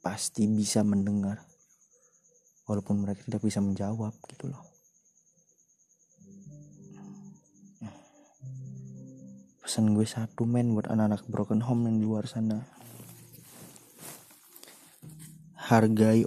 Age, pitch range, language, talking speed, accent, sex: 20-39, 110-170 Hz, Indonesian, 85 wpm, native, male